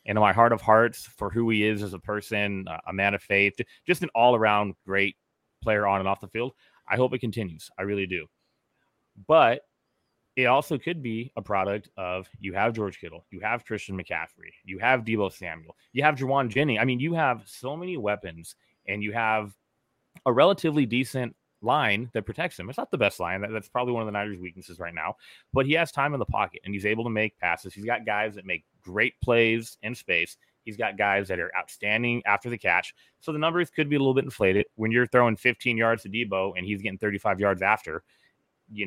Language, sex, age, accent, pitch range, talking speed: English, male, 30-49, American, 100-125 Hz, 220 wpm